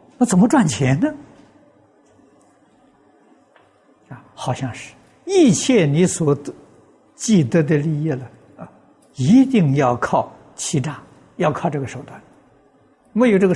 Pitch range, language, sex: 125-180 Hz, Chinese, male